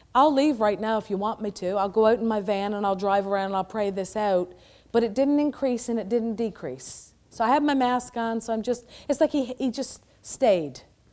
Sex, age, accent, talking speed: female, 40-59, American, 255 wpm